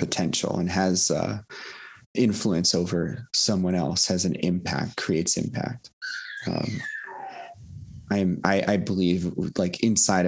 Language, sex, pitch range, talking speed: English, male, 90-105 Hz, 115 wpm